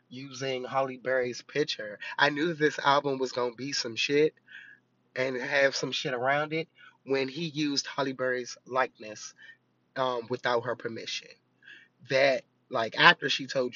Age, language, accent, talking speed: 20-39, English, American, 155 wpm